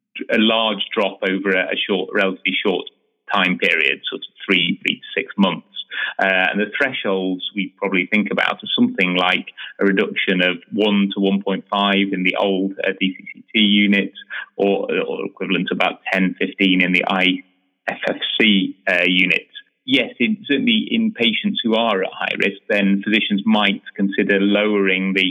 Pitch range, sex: 95-105 Hz, male